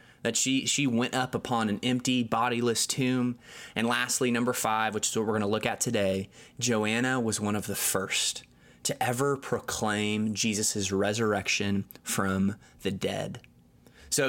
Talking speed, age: 155 wpm, 20-39